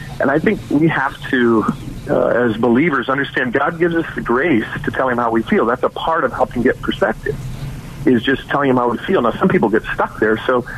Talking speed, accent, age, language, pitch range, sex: 235 wpm, American, 40-59, English, 120-145 Hz, male